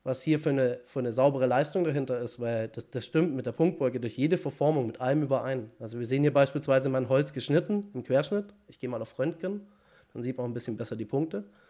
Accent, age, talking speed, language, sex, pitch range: German, 30-49, 240 wpm, German, male, 120-155 Hz